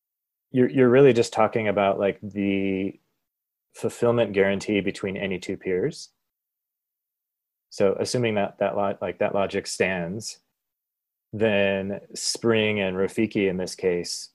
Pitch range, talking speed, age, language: 95-115 Hz, 125 wpm, 30-49, English